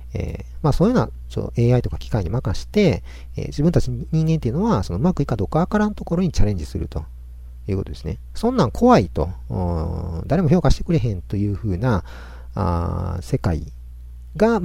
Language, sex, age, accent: Japanese, male, 50-69, native